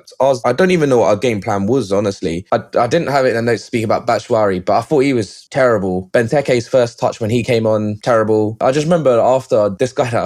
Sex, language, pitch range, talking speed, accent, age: male, English, 105-130 Hz, 265 wpm, British, 10-29